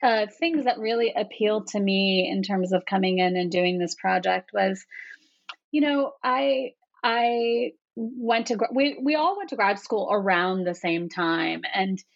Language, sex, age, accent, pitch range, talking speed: English, female, 30-49, American, 195-235 Hz, 180 wpm